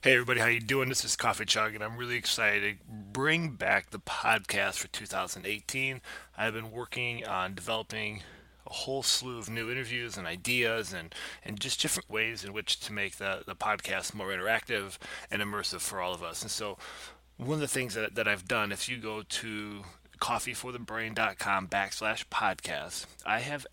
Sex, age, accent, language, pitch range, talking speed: male, 30-49, American, English, 100-125 Hz, 180 wpm